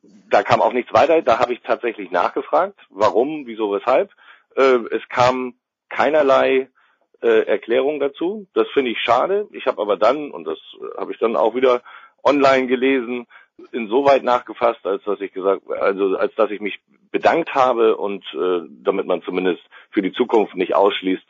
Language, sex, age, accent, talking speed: German, male, 50-69, German, 170 wpm